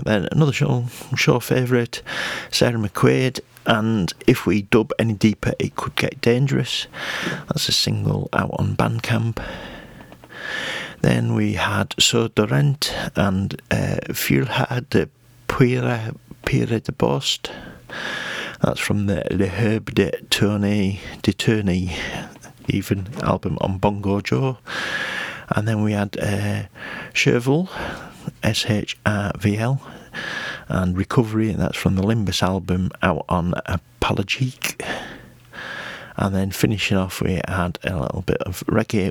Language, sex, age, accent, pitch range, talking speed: English, male, 40-59, British, 95-125 Hz, 120 wpm